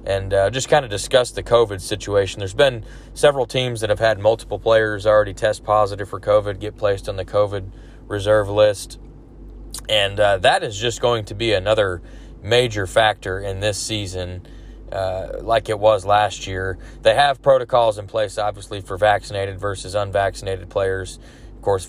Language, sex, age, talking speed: English, male, 20-39, 175 wpm